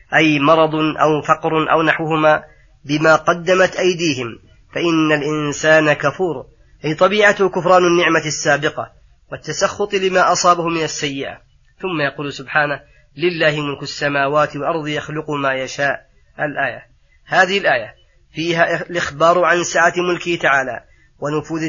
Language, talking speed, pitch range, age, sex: Arabic, 115 wpm, 150-165 Hz, 30-49, female